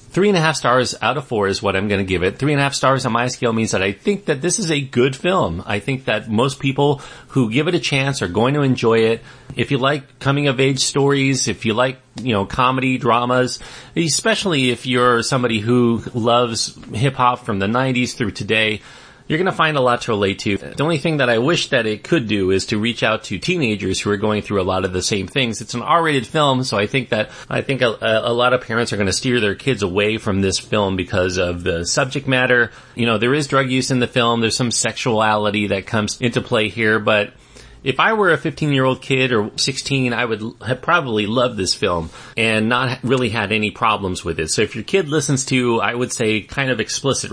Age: 30-49